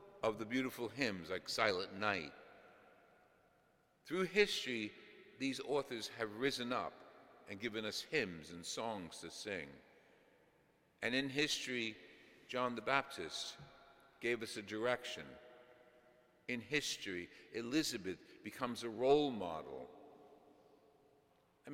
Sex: male